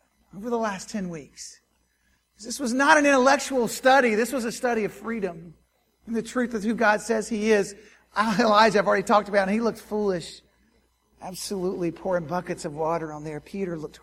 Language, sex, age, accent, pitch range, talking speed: English, male, 50-69, American, 130-195 Hz, 190 wpm